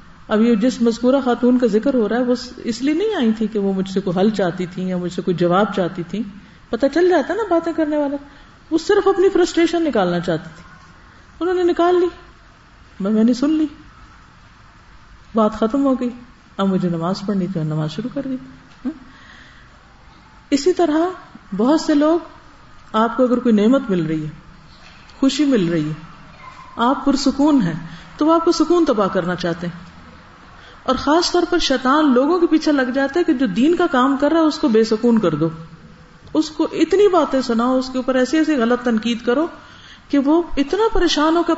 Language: Urdu